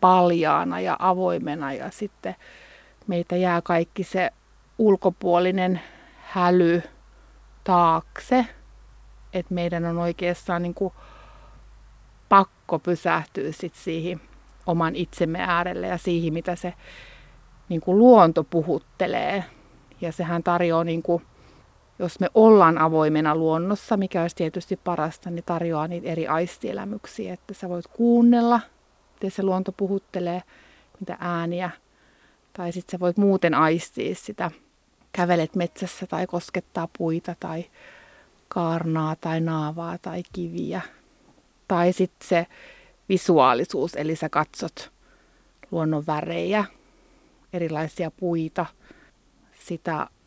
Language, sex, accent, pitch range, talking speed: Finnish, female, native, 165-185 Hz, 105 wpm